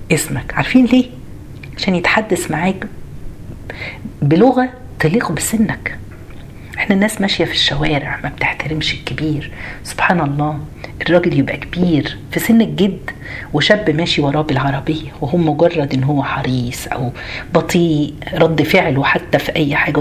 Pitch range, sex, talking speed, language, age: 135-190 Hz, female, 125 wpm, Arabic, 50-69